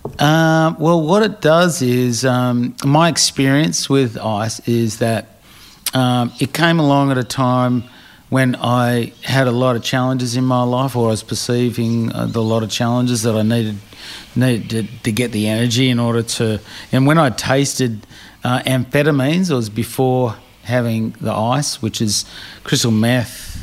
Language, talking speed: English, 170 wpm